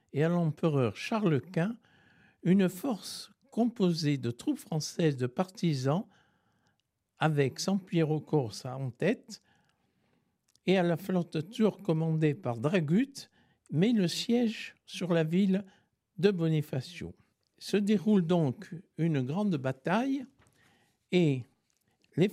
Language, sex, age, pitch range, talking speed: French, male, 60-79, 155-200 Hz, 115 wpm